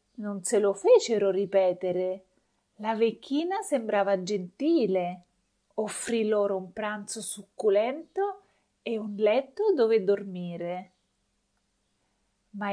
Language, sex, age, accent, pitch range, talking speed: Italian, female, 30-49, native, 190-225 Hz, 95 wpm